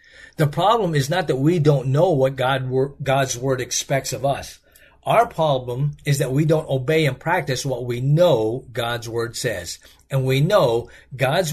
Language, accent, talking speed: English, American, 175 wpm